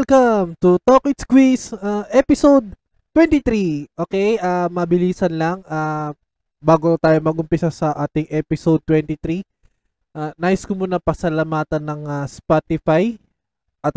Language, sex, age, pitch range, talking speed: Filipino, male, 20-39, 150-175 Hz, 125 wpm